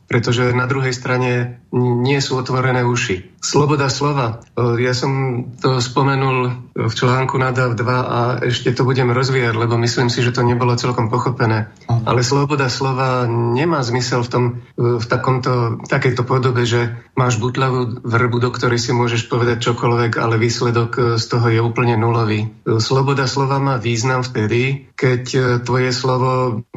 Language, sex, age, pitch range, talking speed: Slovak, male, 40-59, 120-130 Hz, 150 wpm